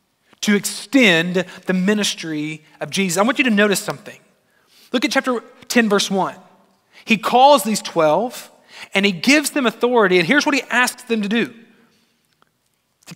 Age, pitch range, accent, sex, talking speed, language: 30-49, 185-240 Hz, American, male, 165 wpm, English